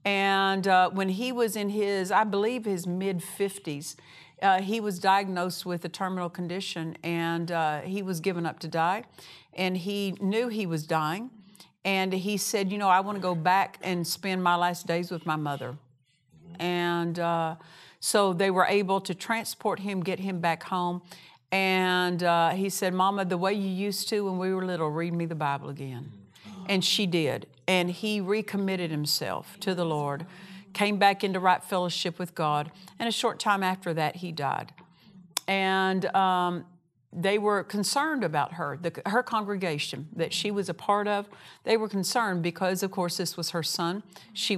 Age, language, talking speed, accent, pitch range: 50-69, English, 180 wpm, American, 170-195 Hz